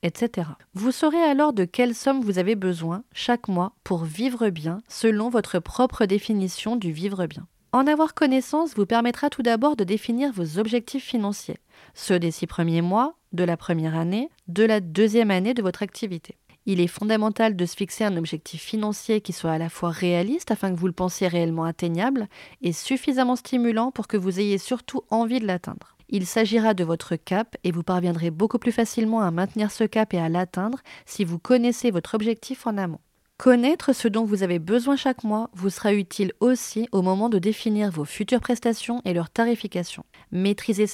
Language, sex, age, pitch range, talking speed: French, female, 30-49, 180-235 Hz, 190 wpm